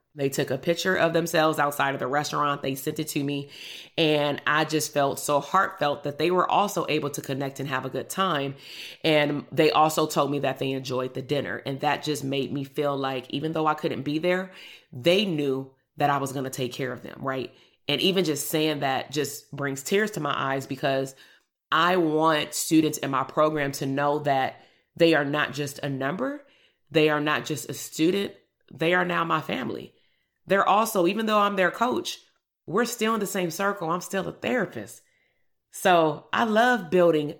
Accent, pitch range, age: American, 140-175 Hz, 30-49